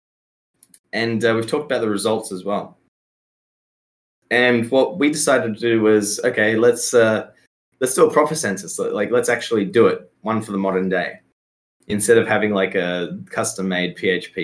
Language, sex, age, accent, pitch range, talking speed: English, male, 20-39, Australian, 90-115 Hz, 170 wpm